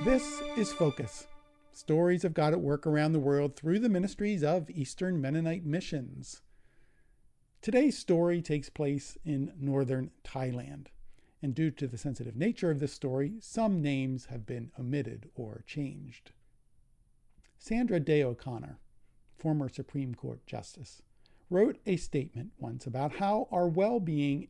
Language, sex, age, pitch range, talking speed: English, male, 50-69, 125-170 Hz, 135 wpm